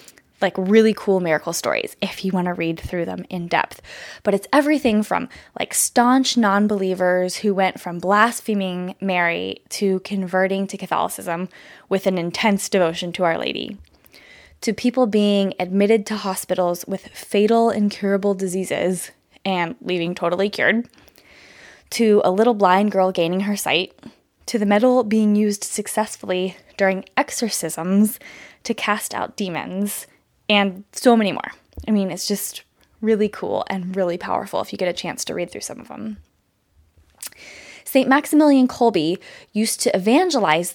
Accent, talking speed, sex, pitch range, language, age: American, 150 wpm, female, 185-225 Hz, English, 10-29